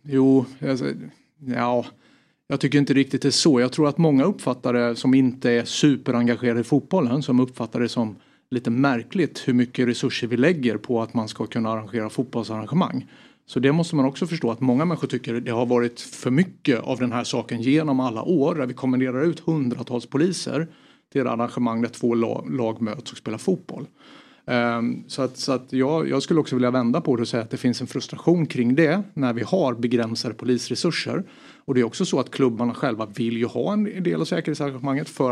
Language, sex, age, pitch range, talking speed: Swedish, male, 30-49, 120-145 Hz, 200 wpm